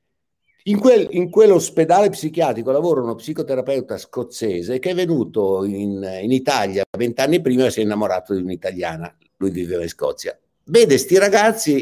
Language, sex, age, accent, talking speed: Italian, male, 60-79, native, 150 wpm